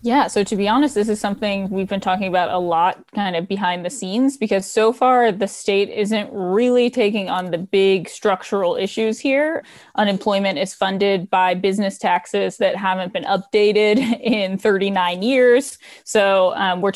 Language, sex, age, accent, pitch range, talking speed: English, female, 20-39, American, 190-215 Hz, 175 wpm